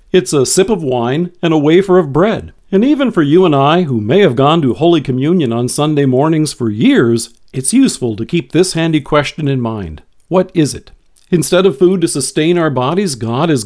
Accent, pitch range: American, 130-180 Hz